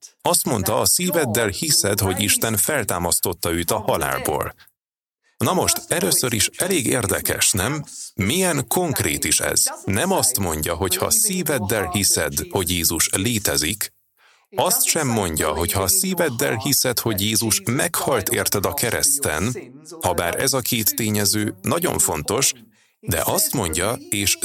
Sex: male